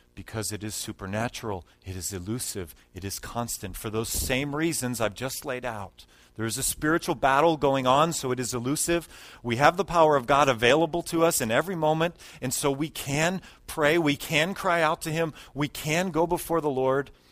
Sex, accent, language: male, American, English